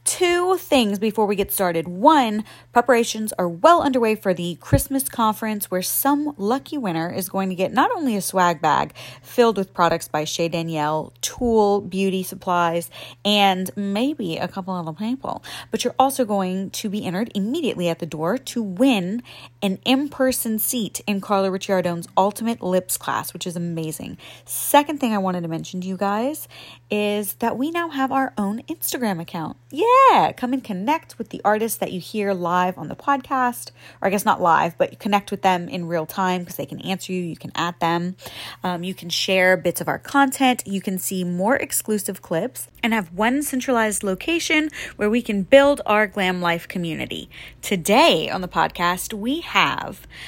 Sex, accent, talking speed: female, American, 185 wpm